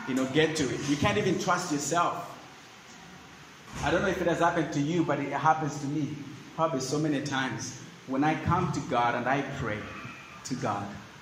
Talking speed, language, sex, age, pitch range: 205 wpm, English, male, 30-49, 130-150 Hz